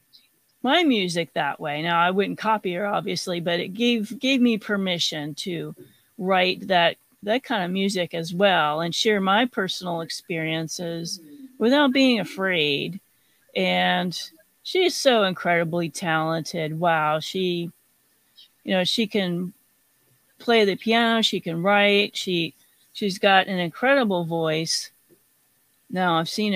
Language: English